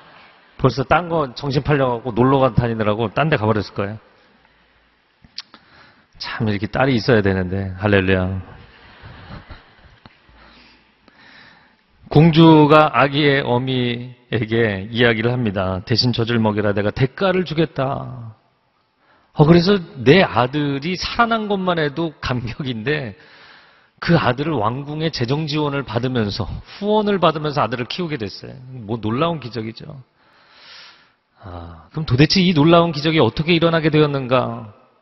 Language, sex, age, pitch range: Korean, male, 40-59, 120-170 Hz